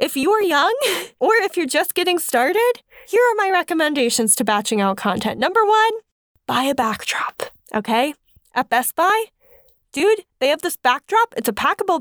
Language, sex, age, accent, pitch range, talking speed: English, female, 10-29, American, 250-350 Hz, 175 wpm